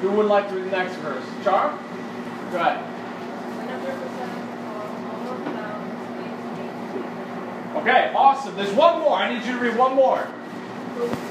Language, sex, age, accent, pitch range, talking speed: English, male, 30-49, American, 205-280 Hz, 120 wpm